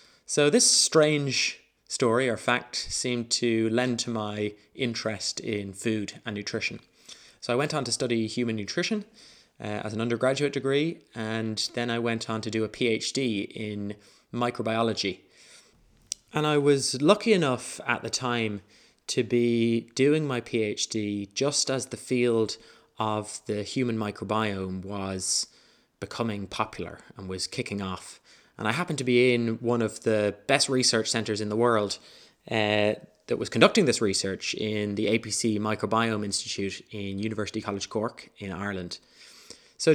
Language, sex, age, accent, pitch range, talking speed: English, male, 20-39, British, 105-125 Hz, 150 wpm